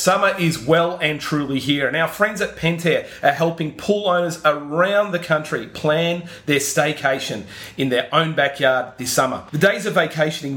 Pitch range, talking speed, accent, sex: 135-175 Hz, 175 wpm, Australian, male